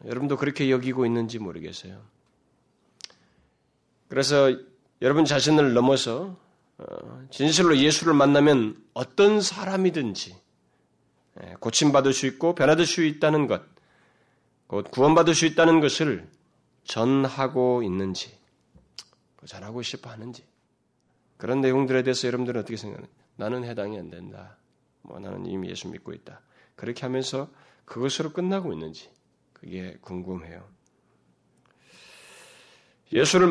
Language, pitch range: Korean, 110-150 Hz